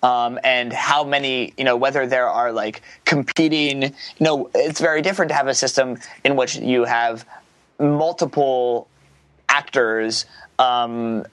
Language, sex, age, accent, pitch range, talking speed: English, male, 20-39, American, 120-145 Hz, 145 wpm